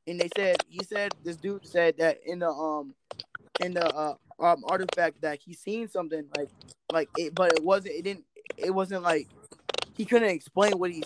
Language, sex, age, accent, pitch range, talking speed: English, male, 20-39, American, 155-190 Hz, 200 wpm